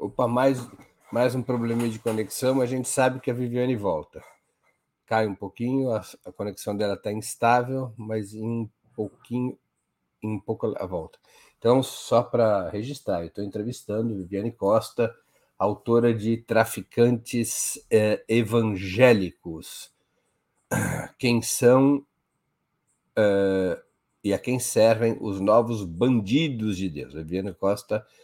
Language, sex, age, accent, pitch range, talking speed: Portuguese, male, 50-69, Brazilian, 105-130 Hz, 125 wpm